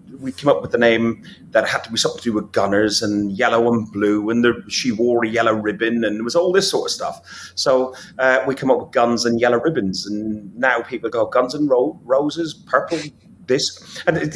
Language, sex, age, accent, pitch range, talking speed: English, male, 40-59, British, 105-165 Hz, 235 wpm